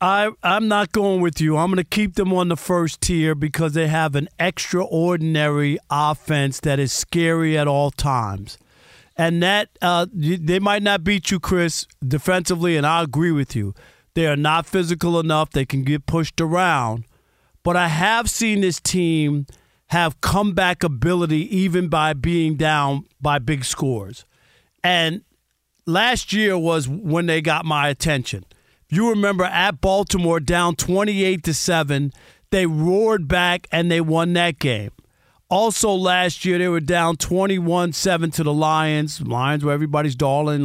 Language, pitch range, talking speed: English, 150-185 Hz, 160 wpm